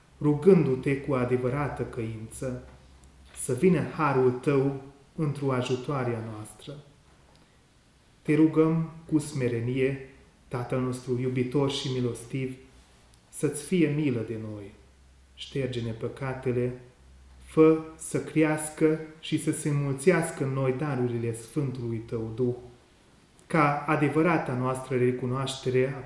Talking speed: 105 wpm